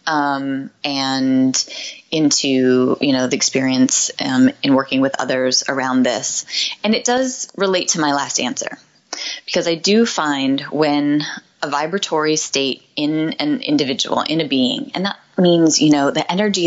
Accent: American